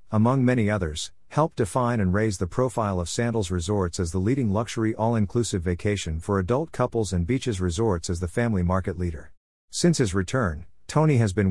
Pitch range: 90-115 Hz